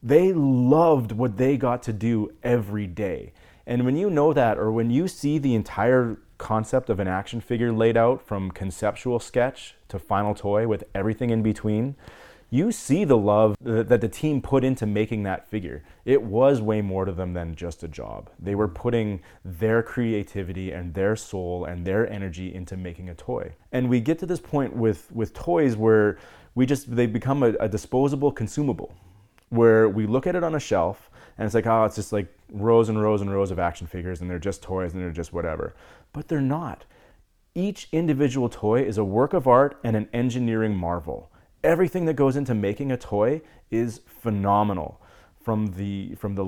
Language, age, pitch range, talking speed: English, 30-49, 100-125 Hz, 195 wpm